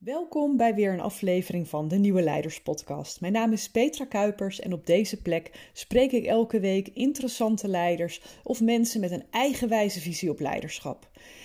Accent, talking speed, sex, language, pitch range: Dutch, 175 wpm, female, Dutch, 180-230 Hz